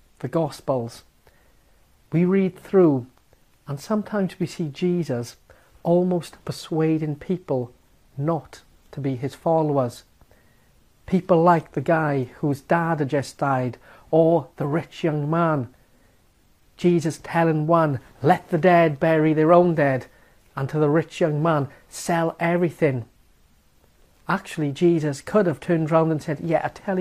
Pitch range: 140-170 Hz